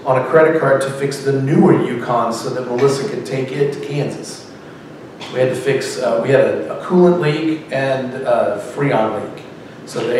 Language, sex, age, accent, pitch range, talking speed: English, male, 40-59, American, 125-145 Hz, 200 wpm